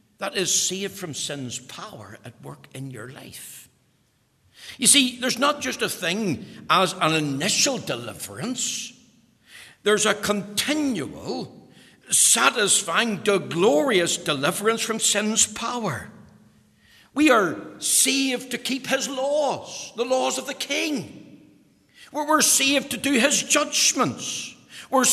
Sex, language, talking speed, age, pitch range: male, English, 120 wpm, 60-79, 170-260 Hz